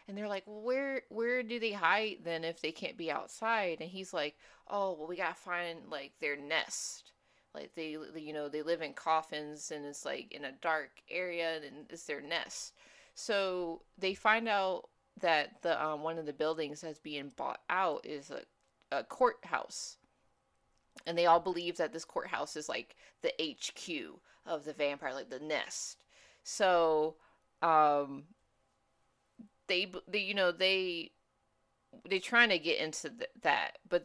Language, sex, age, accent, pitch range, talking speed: English, female, 20-39, American, 155-215 Hz, 170 wpm